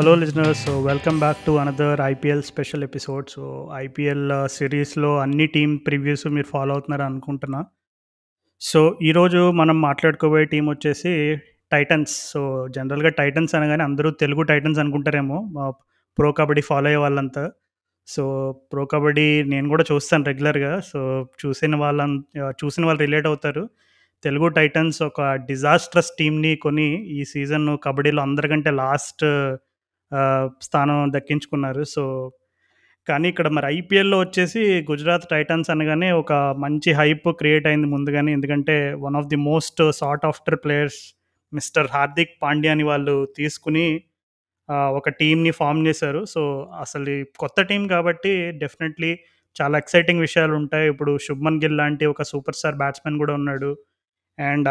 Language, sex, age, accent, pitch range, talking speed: Telugu, male, 30-49, native, 140-160 Hz, 135 wpm